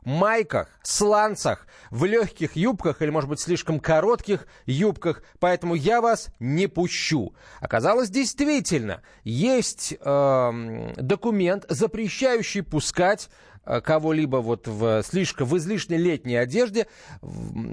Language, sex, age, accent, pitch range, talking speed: Russian, male, 30-49, native, 140-210 Hz, 110 wpm